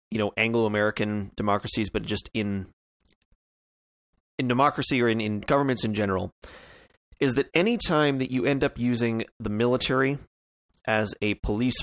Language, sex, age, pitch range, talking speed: English, male, 30-49, 95-125 Hz, 150 wpm